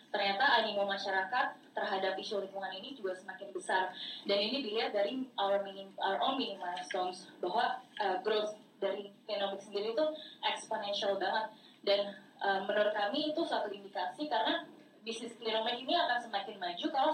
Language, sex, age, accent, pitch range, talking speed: Indonesian, female, 20-39, native, 185-240 Hz, 155 wpm